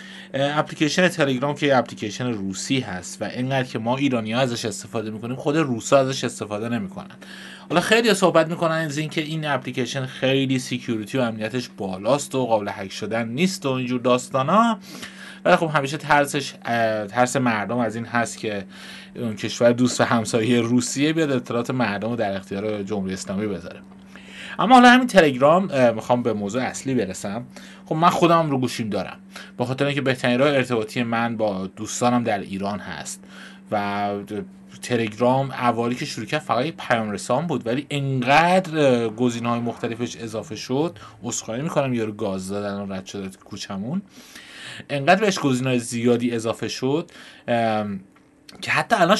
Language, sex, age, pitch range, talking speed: Persian, male, 30-49, 115-150 Hz, 160 wpm